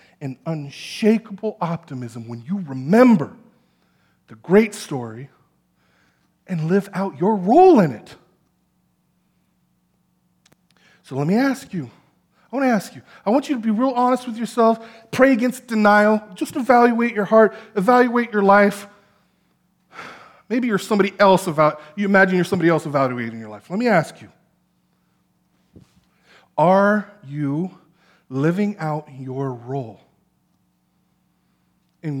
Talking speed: 125 wpm